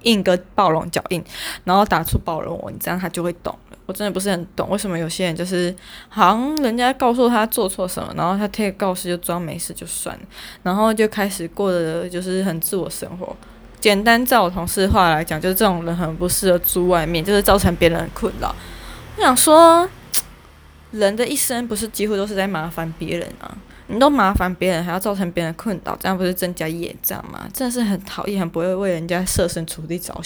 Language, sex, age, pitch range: Chinese, female, 10-29, 175-205 Hz